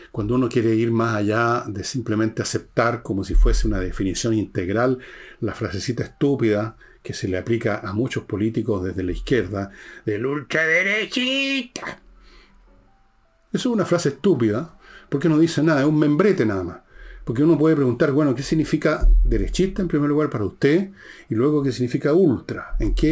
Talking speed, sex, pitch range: 165 wpm, male, 105-150 Hz